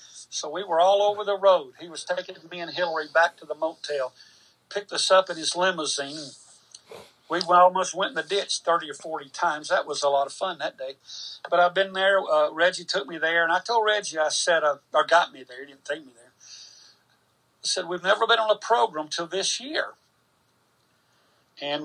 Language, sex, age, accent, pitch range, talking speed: English, male, 50-69, American, 150-180 Hz, 215 wpm